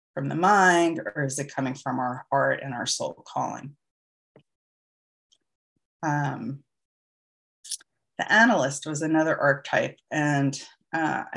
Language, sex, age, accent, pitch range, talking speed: English, female, 30-49, American, 140-165 Hz, 110 wpm